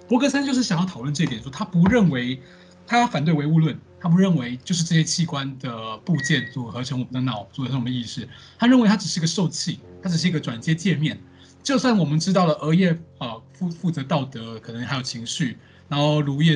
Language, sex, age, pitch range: Chinese, male, 20-39, 130-180 Hz